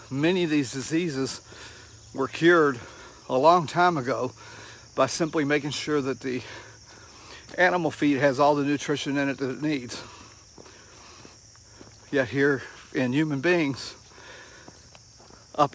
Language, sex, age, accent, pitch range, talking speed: English, male, 60-79, American, 115-155 Hz, 125 wpm